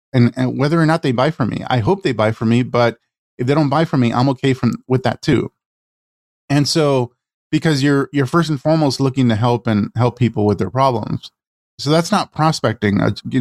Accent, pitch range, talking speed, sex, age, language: American, 110-130 Hz, 230 wpm, male, 20-39, English